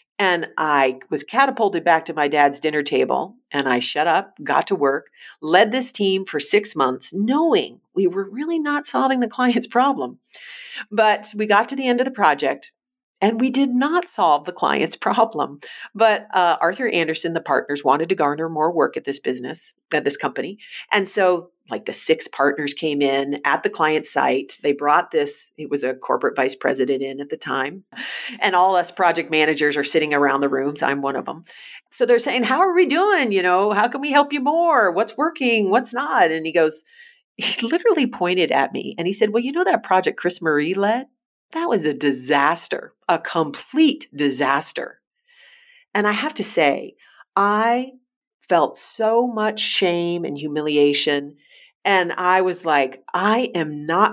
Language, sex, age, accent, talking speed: English, female, 50-69, American, 185 wpm